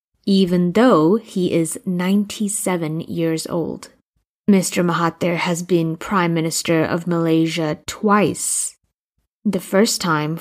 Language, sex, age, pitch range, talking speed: English, female, 20-39, 165-195 Hz, 110 wpm